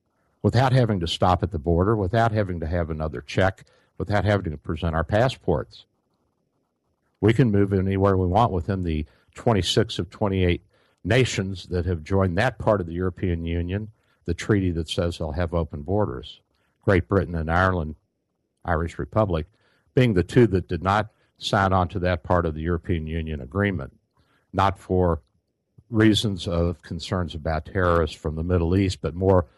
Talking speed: 170 wpm